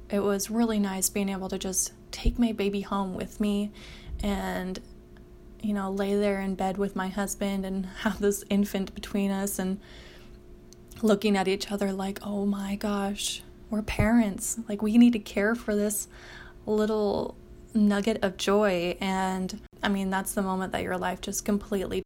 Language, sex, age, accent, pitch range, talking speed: English, female, 20-39, American, 190-215 Hz, 170 wpm